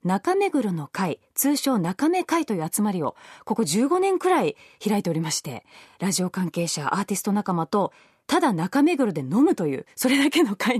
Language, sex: Japanese, female